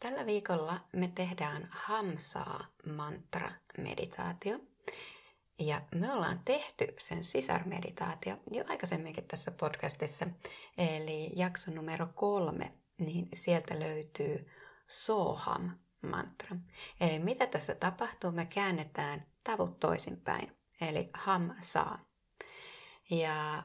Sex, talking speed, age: female, 85 wpm, 30-49